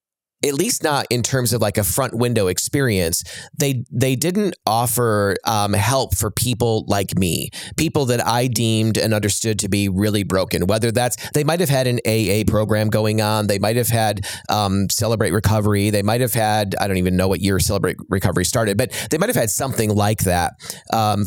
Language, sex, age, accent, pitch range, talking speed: English, male, 30-49, American, 105-120 Hz, 200 wpm